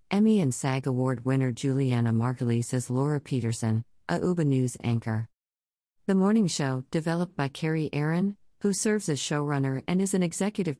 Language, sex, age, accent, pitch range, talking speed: English, female, 50-69, American, 130-165 Hz, 160 wpm